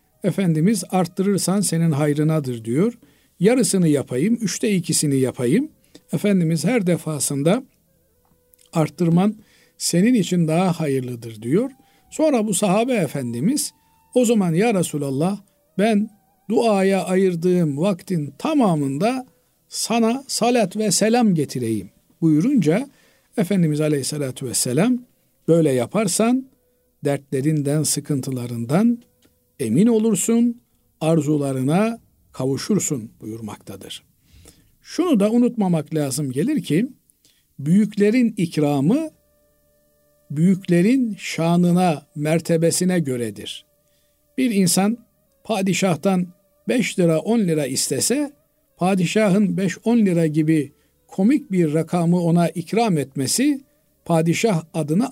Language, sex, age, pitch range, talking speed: Turkish, male, 50-69, 150-220 Hz, 90 wpm